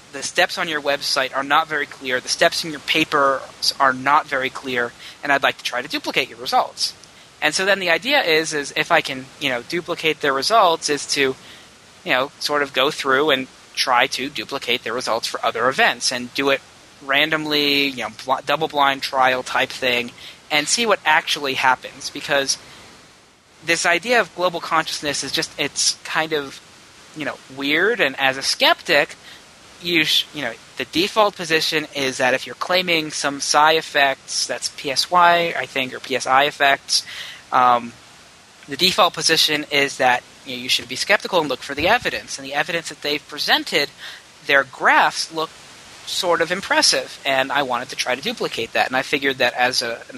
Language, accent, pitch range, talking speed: English, American, 130-165 Hz, 190 wpm